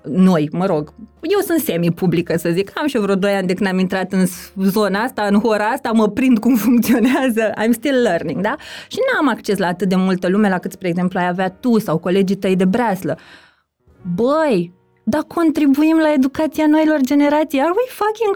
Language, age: Romanian, 20-39